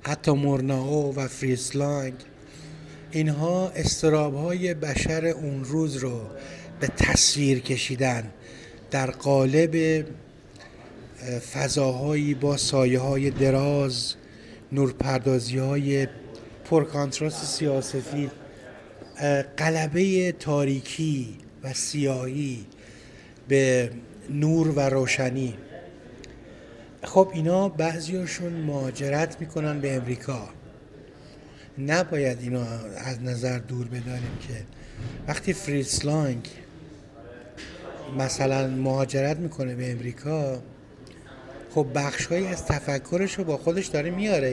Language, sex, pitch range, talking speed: Persian, male, 130-155 Hz, 80 wpm